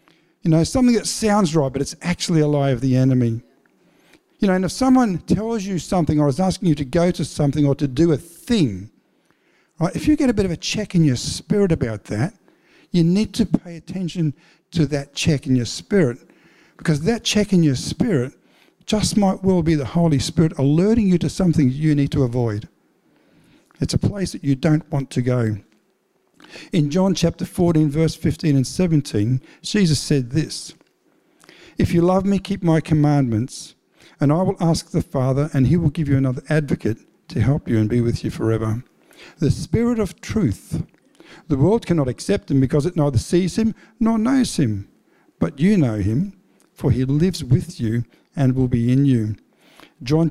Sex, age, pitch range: male, 50-69, 135-185 Hz